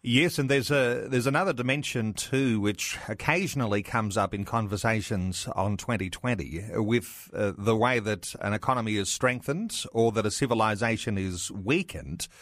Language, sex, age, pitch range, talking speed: English, male, 40-59, 110-135 Hz, 150 wpm